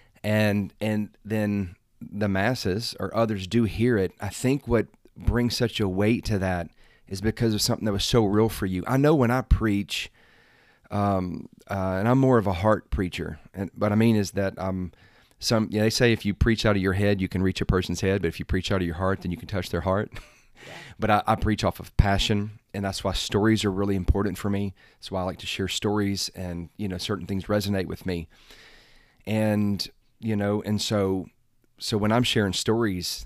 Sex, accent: male, American